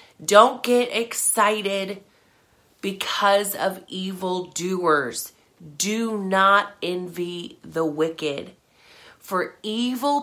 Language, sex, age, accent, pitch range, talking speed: English, female, 30-49, American, 155-210 Hz, 75 wpm